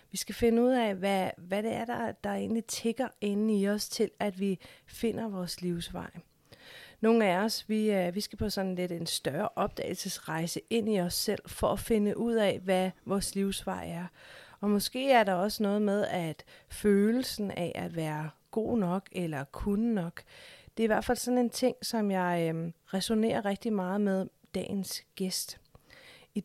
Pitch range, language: 180-220 Hz, Danish